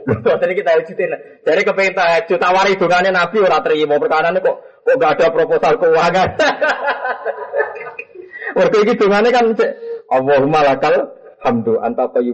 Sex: male